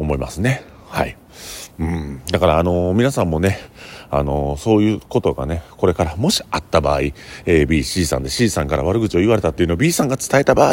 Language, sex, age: Japanese, male, 40-59